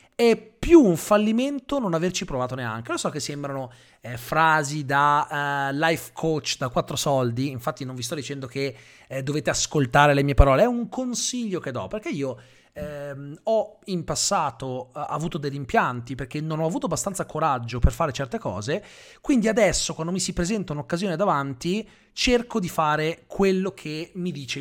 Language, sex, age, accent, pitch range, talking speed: Italian, male, 30-49, native, 135-190 Hz, 180 wpm